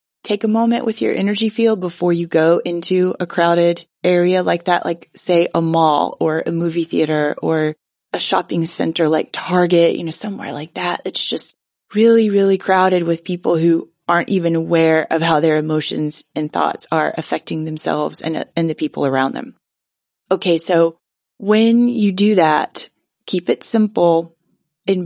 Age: 30-49